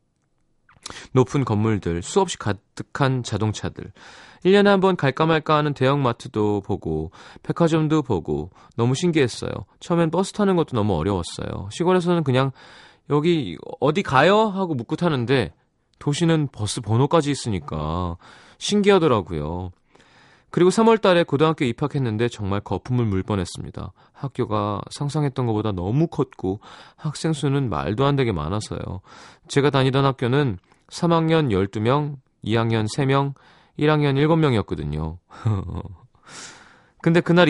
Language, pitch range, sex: Korean, 100-155 Hz, male